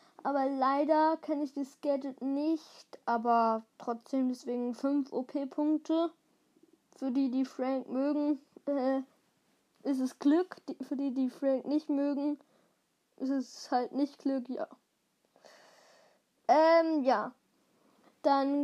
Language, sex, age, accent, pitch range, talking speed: German, female, 20-39, German, 260-315 Hz, 115 wpm